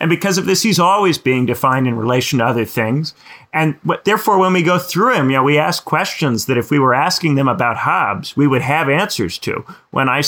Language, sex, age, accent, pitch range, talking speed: English, male, 40-59, American, 130-165 Hz, 240 wpm